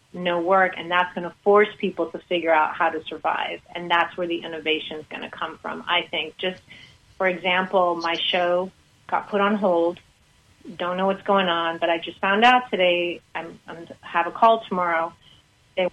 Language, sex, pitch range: English, female, 165-185 Hz